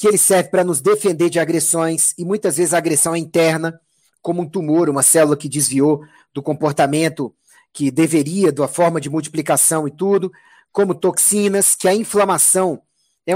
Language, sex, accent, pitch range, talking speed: Portuguese, male, Brazilian, 160-210 Hz, 170 wpm